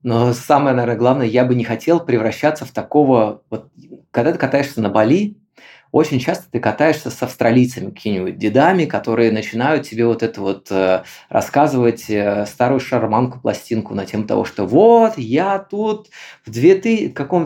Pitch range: 115-170 Hz